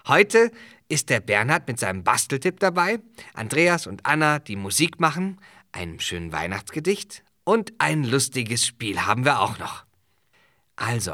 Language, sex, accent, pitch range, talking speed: German, male, German, 95-130 Hz, 140 wpm